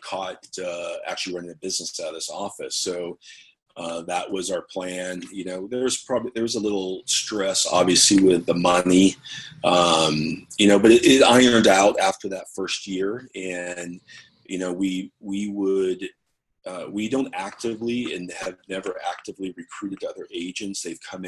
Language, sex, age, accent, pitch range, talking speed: English, male, 30-49, American, 90-100 Hz, 170 wpm